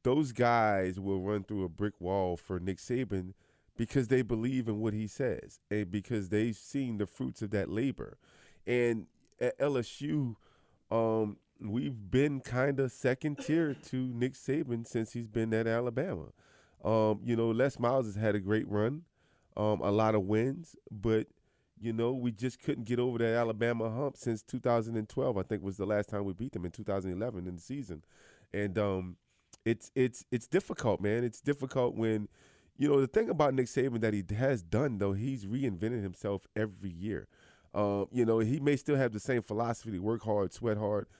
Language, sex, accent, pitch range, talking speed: English, male, American, 105-125 Hz, 185 wpm